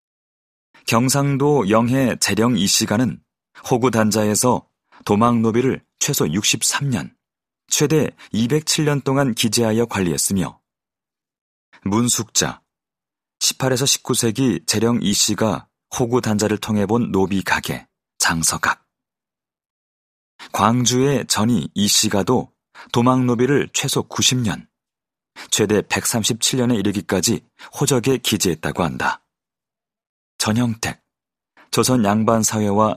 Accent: native